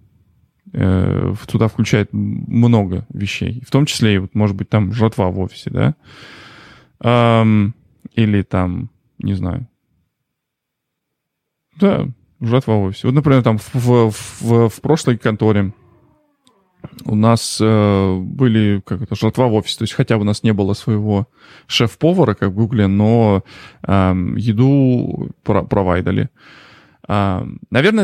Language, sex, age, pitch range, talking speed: Russian, male, 20-39, 100-125 Hz, 120 wpm